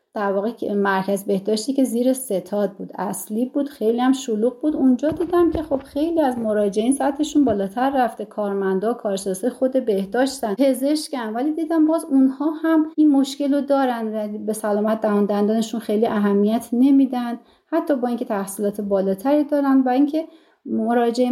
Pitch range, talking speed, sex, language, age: 210-285 Hz, 150 wpm, female, Persian, 30-49